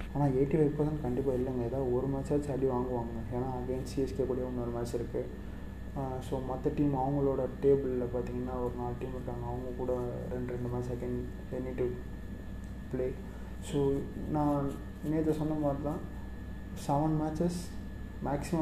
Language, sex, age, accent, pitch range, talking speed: Tamil, male, 20-39, native, 120-135 Hz, 150 wpm